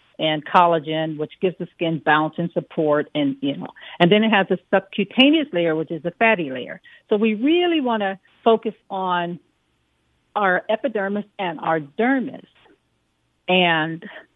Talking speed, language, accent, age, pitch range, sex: 155 wpm, English, American, 50-69, 165-230 Hz, female